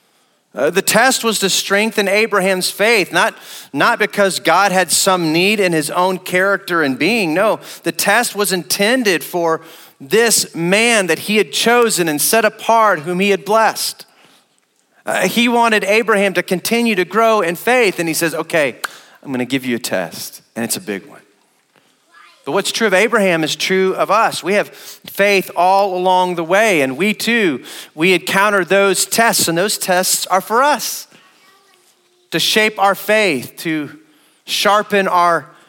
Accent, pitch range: American, 160-205 Hz